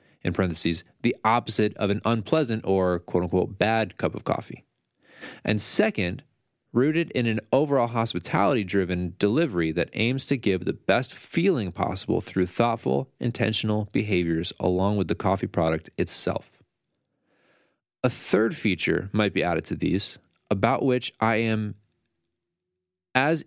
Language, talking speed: English, 135 wpm